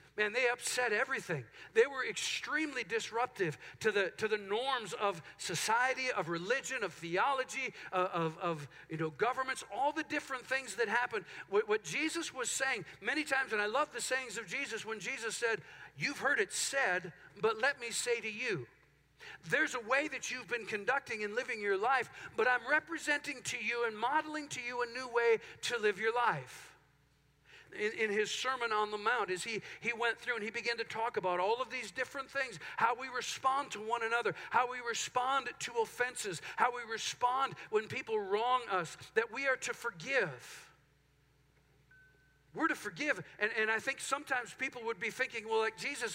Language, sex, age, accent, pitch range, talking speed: English, male, 50-69, American, 210-270 Hz, 190 wpm